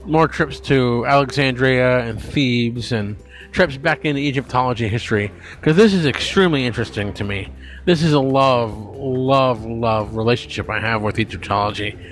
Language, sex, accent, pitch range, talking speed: English, male, American, 110-145 Hz, 150 wpm